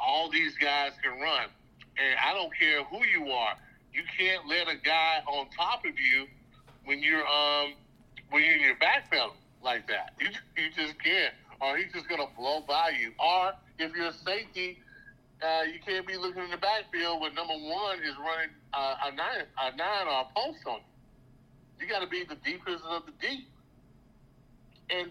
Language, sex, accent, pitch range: English, male, American, 130-175 Hz